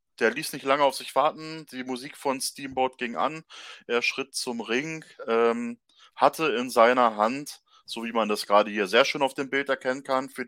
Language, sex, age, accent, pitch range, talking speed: German, male, 20-39, German, 110-130 Hz, 205 wpm